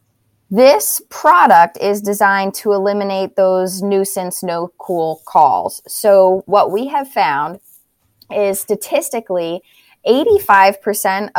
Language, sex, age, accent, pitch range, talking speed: English, female, 20-39, American, 180-210 Hz, 100 wpm